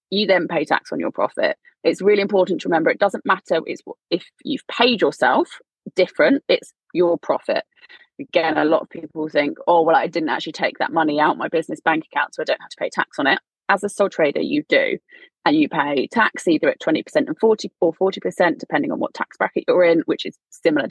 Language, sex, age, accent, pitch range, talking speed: English, female, 20-39, British, 170-285 Hz, 225 wpm